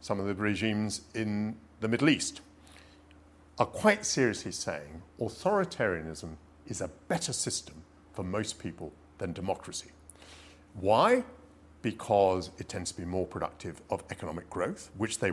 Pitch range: 80-120 Hz